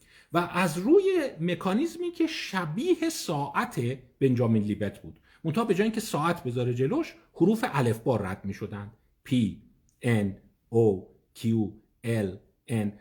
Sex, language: male, Persian